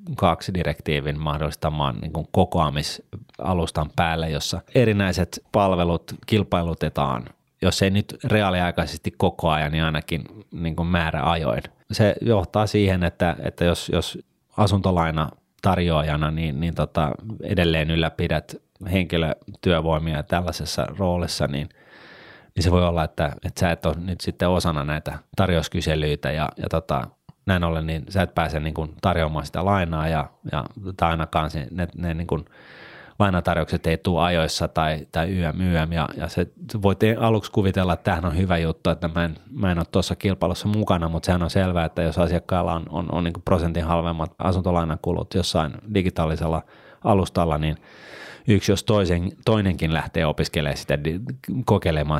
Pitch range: 80-95 Hz